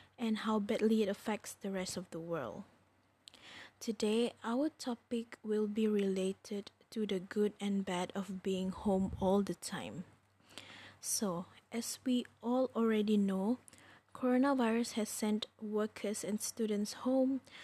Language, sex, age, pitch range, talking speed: English, female, 20-39, 200-230 Hz, 135 wpm